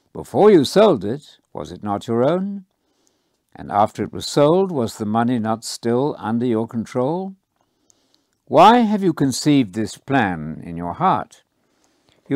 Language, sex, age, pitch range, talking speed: English, male, 60-79, 110-155 Hz, 155 wpm